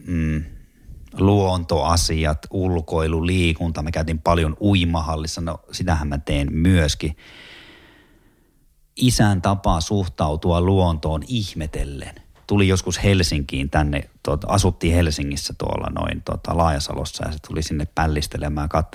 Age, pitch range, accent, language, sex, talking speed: 30-49, 75-95 Hz, native, Finnish, male, 110 wpm